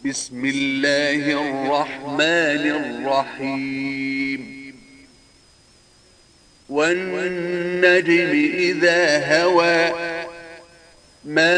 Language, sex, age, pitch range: Arabic, male, 50-69, 135-180 Hz